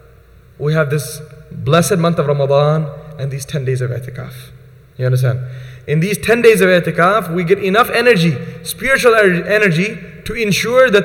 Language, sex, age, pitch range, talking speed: English, male, 30-49, 140-190 Hz, 165 wpm